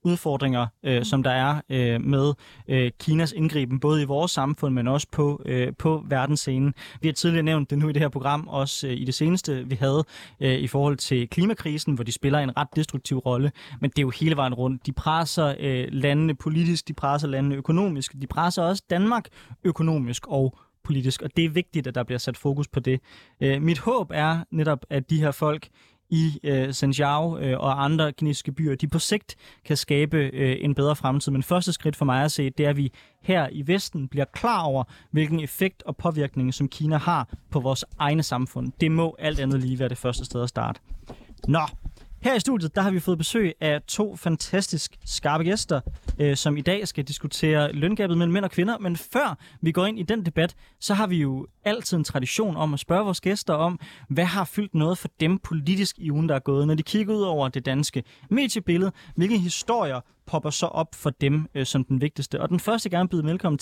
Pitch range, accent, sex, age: 135-170 Hz, native, male, 20-39